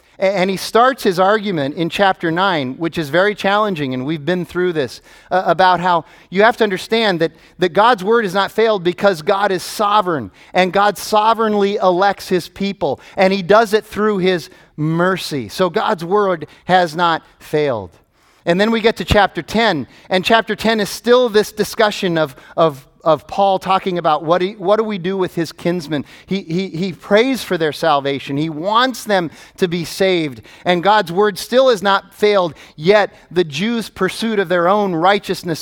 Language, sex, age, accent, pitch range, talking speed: English, male, 40-59, American, 155-195 Hz, 185 wpm